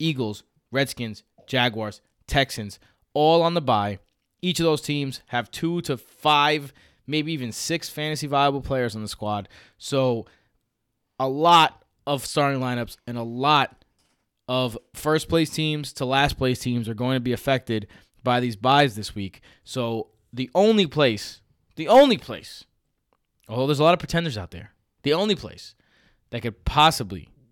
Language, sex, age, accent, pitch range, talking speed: English, male, 20-39, American, 115-145 Hz, 160 wpm